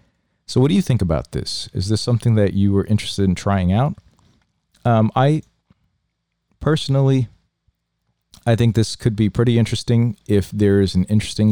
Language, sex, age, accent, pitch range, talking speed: English, male, 40-59, American, 90-115 Hz, 165 wpm